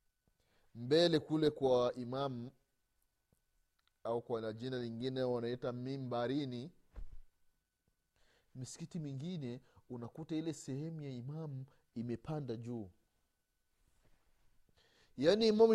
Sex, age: male, 30-49